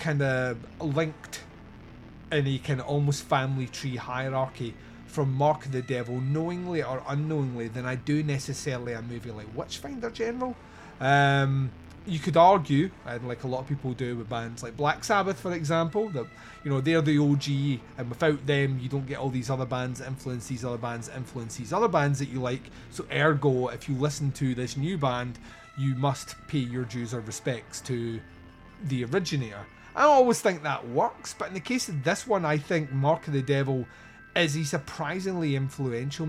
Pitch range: 125-155 Hz